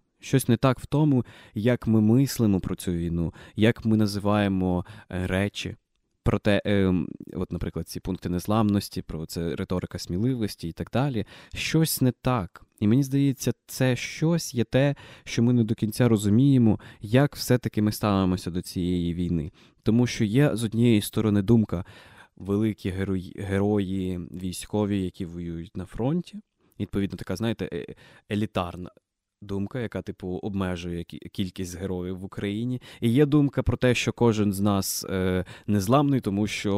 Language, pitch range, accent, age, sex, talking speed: Ukrainian, 95-120 Hz, native, 20-39, male, 150 wpm